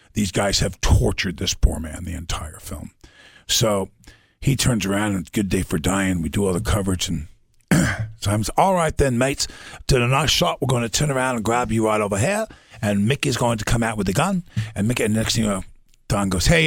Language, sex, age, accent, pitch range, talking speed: English, male, 50-69, American, 95-120 Hz, 245 wpm